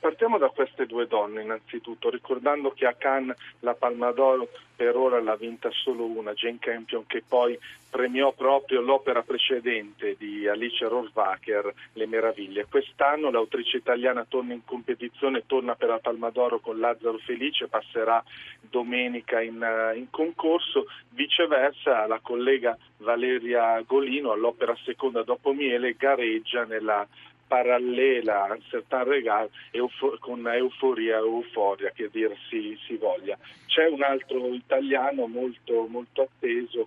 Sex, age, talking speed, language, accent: male, 40-59, 135 wpm, Italian, native